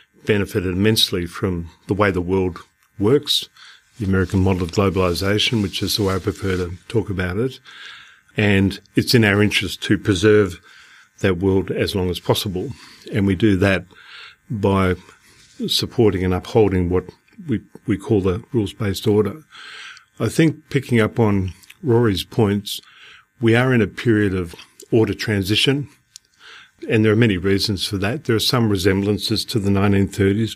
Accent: Australian